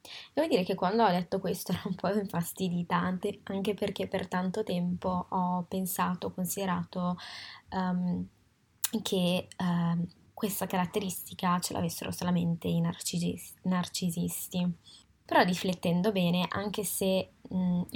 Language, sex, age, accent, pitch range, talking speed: Italian, female, 20-39, native, 175-200 Hz, 115 wpm